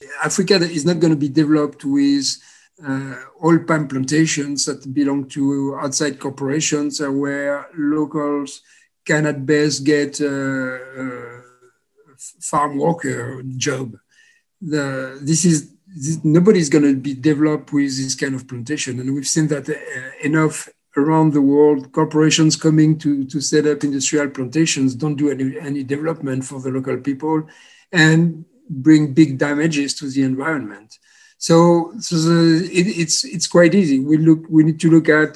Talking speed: 155 wpm